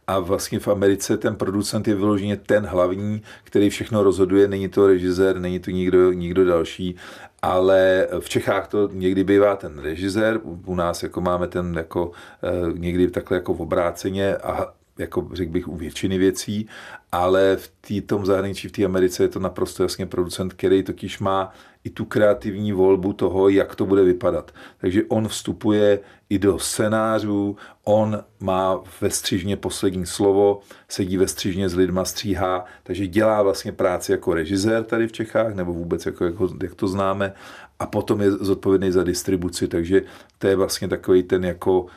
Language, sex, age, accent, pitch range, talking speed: Czech, male, 40-59, native, 90-100 Hz, 170 wpm